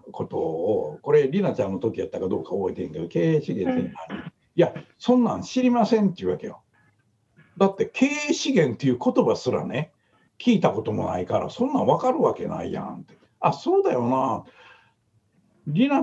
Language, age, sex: Japanese, 60-79, male